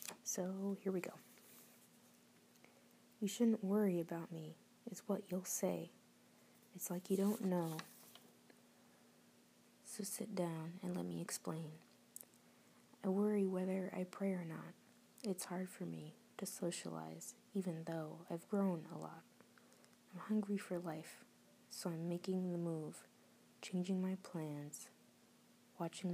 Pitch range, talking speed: 150-195 Hz, 130 wpm